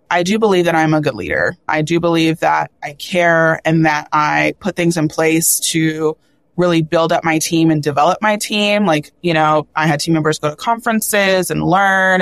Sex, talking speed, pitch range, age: female, 210 wpm, 160-180 Hz, 20-39